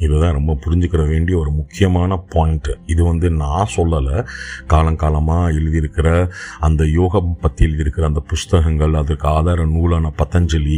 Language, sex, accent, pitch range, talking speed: Tamil, male, native, 75-90 Hz, 120 wpm